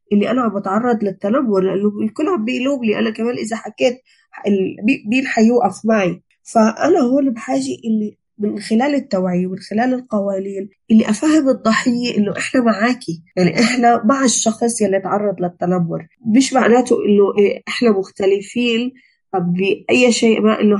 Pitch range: 195-235 Hz